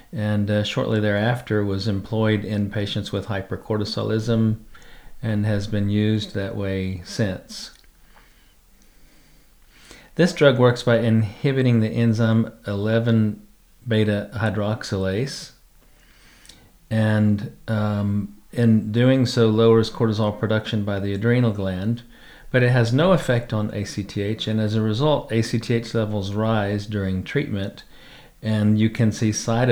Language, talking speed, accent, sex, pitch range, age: English, 115 wpm, American, male, 100-115 Hz, 40-59